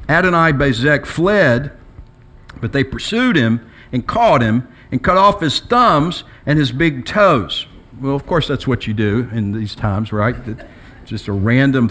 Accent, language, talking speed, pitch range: American, English, 170 wpm, 120-165 Hz